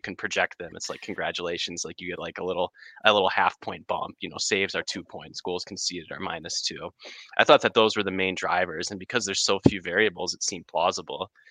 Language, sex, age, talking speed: English, male, 20-39, 235 wpm